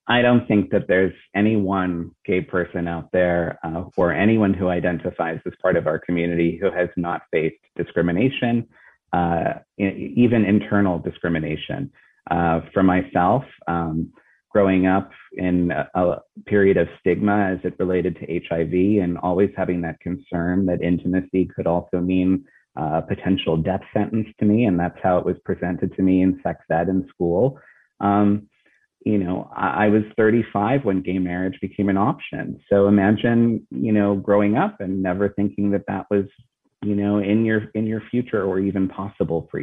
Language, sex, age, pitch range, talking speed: English, male, 30-49, 90-105 Hz, 170 wpm